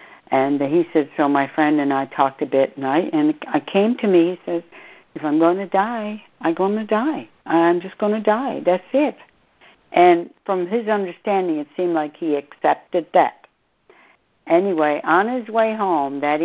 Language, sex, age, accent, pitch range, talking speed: English, female, 60-79, American, 140-195 Hz, 185 wpm